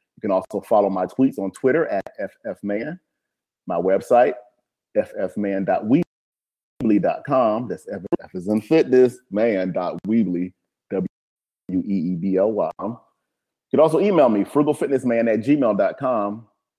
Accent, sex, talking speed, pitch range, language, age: American, male, 100 wpm, 90-115 Hz, English, 30-49